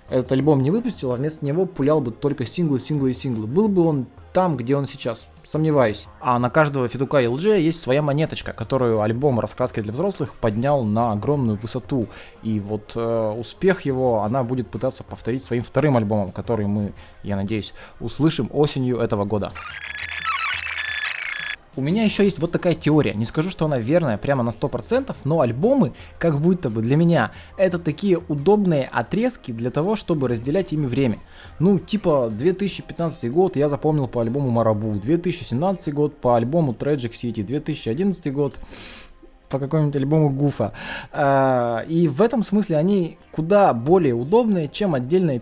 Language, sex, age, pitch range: Russian, male, 20-39, 120-160 Hz